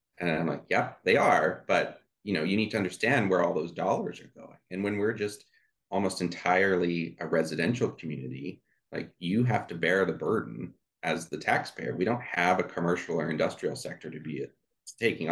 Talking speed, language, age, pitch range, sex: 195 wpm, English, 30-49, 85-100 Hz, male